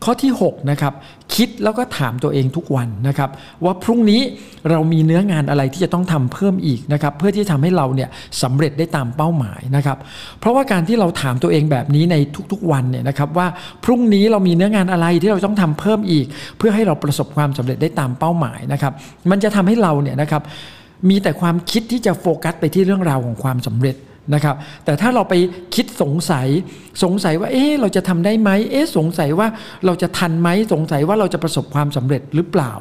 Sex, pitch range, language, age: male, 140-180 Hz, Thai, 60-79